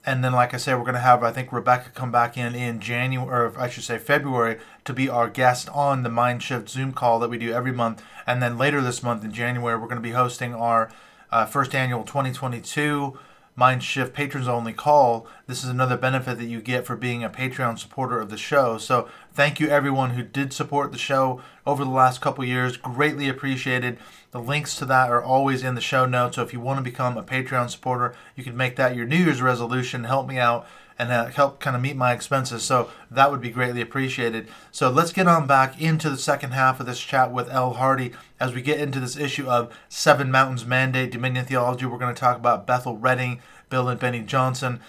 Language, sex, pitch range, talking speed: English, male, 120-135 Hz, 230 wpm